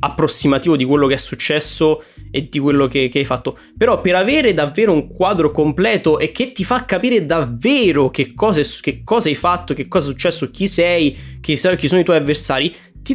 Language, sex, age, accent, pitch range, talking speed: Italian, male, 20-39, native, 130-175 Hz, 205 wpm